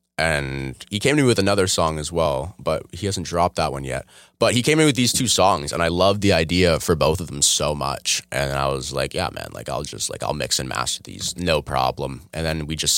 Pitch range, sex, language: 75-105 Hz, male, English